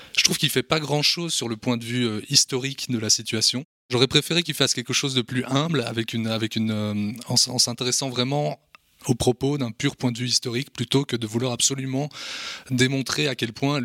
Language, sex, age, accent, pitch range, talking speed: French, male, 20-39, French, 115-135 Hz, 220 wpm